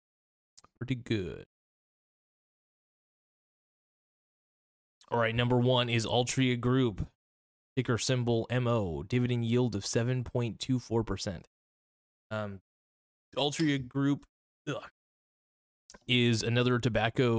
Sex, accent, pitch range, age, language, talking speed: male, American, 110-125 Hz, 20-39, English, 95 wpm